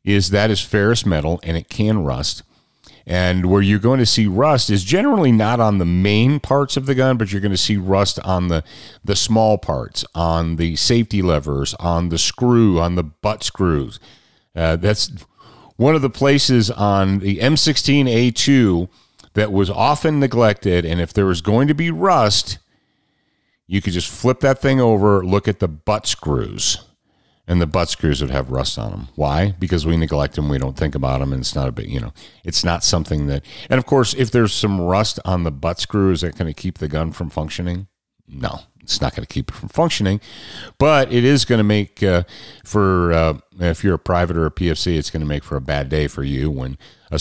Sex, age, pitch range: male, 40-59, 80-110 Hz